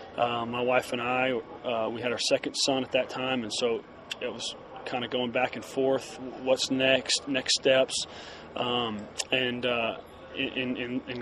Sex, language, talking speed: male, English, 175 wpm